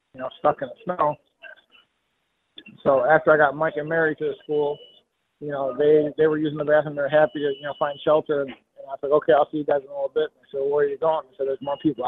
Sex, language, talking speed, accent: male, English, 265 wpm, American